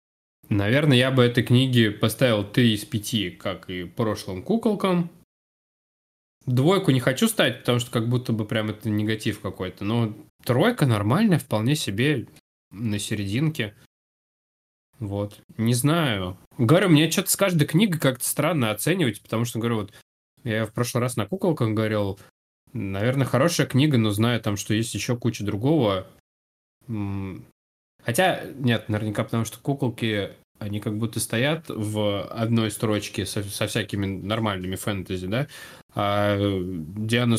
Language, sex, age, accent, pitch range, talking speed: Russian, male, 20-39, native, 100-130 Hz, 140 wpm